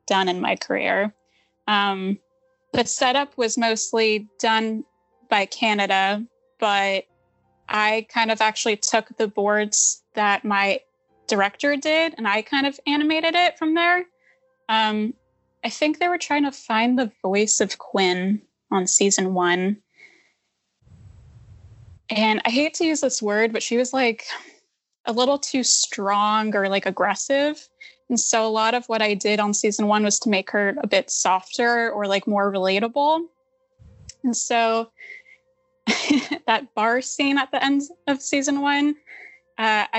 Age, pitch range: 20-39, 205-270 Hz